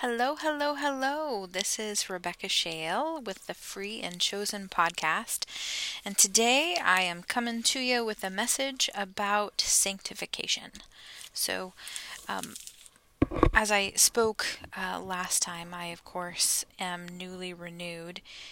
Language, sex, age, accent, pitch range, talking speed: English, female, 10-29, American, 175-210 Hz, 125 wpm